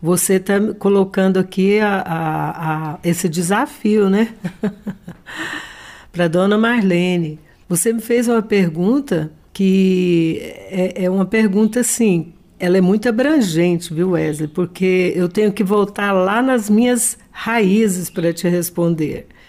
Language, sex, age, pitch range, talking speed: Portuguese, female, 60-79, 170-210 Hz, 130 wpm